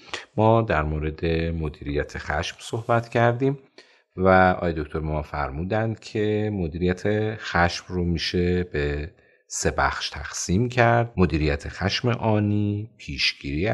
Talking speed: 115 wpm